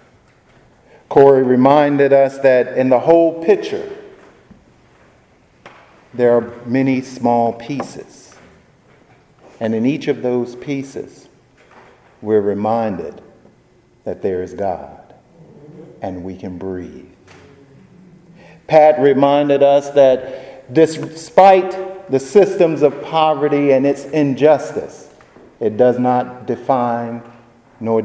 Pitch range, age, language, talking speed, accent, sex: 105-145 Hz, 50-69, English, 100 wpm, American, male